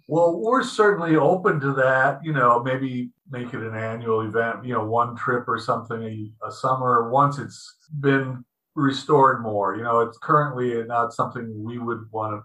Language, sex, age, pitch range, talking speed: English, male, 50-69, 115-150 Hz, 185 wpm